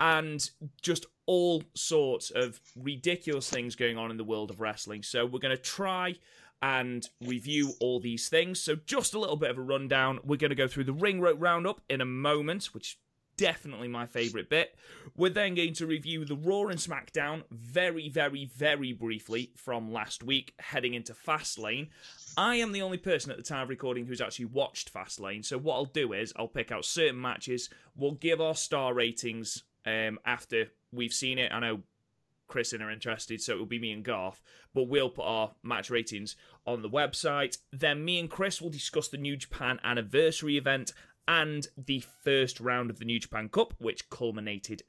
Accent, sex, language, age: British, male, English, 30-49